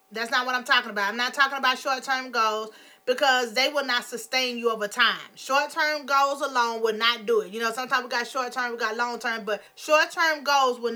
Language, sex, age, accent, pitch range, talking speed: English, female, 30-49, American, 230-275 Hz, 220 wpm